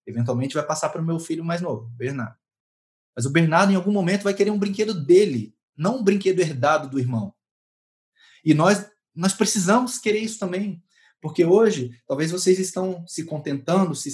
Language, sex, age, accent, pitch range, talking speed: Portuguese, male, 20-39, Brazilian, 135-185 Hz, 180 wpm